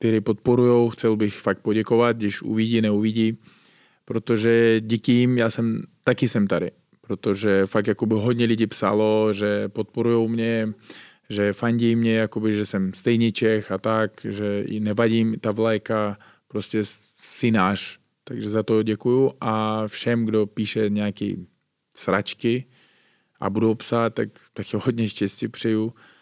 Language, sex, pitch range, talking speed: Czech, male, 105-115 Hz, 145 wpm